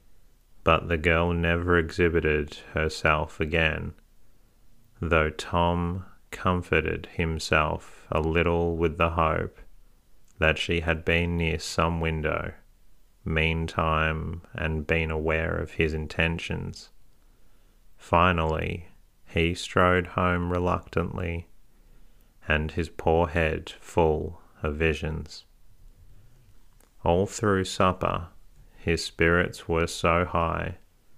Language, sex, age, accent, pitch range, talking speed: English, male, 30-49, Australian, 80-90 Hz, 95 wpm